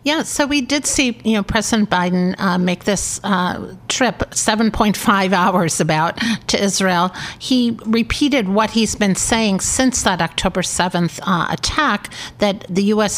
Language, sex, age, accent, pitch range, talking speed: English, female, 50-69, American, 175-220 Hz, 165 wpm